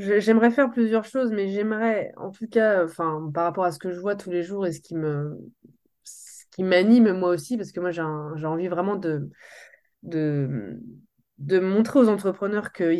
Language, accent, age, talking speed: French, French, 20-39, 205 wpm